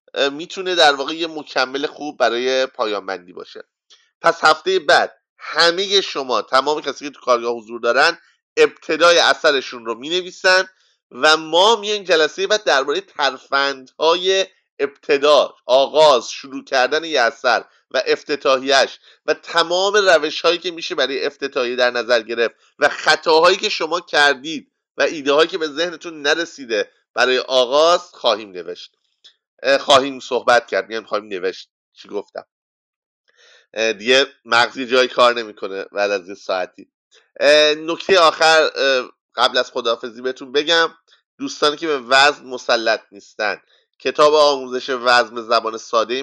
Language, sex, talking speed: English, male, 135 wpm